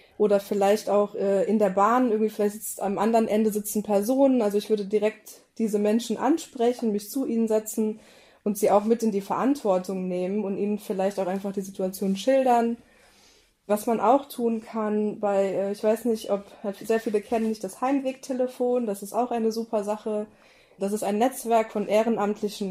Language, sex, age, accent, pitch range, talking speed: German, female, 20-39, German, 200-235 Hz, 190 wpm